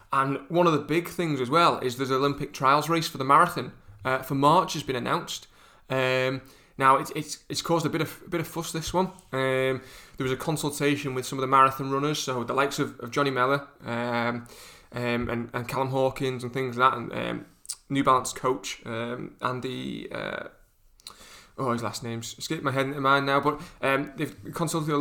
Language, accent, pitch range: English, British, 125-145 Hz